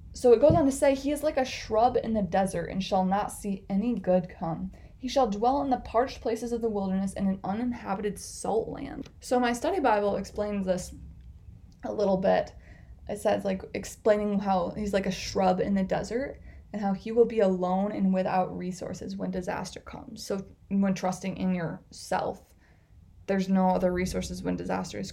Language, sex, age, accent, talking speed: English, female, 20-39, American, 190 wpm